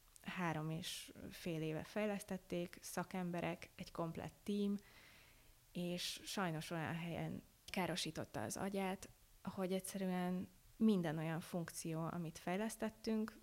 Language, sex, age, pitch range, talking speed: Hungarian, female, 20-39, 165-195 Hz, 105 wpm